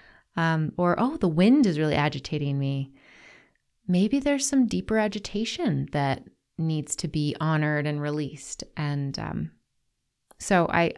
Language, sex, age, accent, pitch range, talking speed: English, female, 30-49, American, 145-185 Hz, 135 wpm